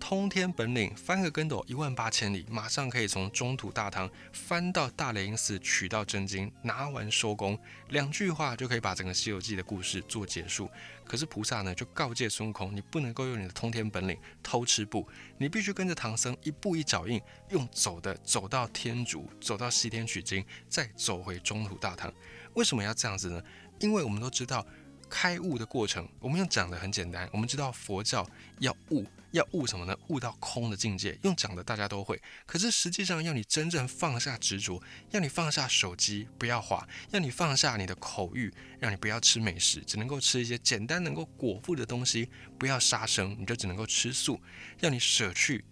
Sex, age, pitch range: male, 20-39, 100-130 Hz